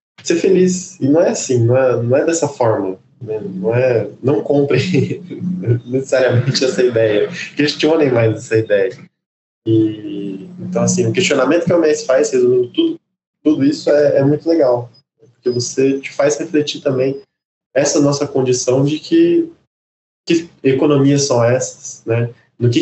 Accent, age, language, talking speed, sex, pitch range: Brazilian, 20-39, Portuguese, 155 wpm, male, 115-150 Hz